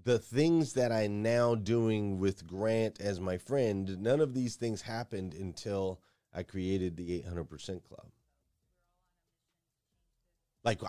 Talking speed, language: 125 wpm, English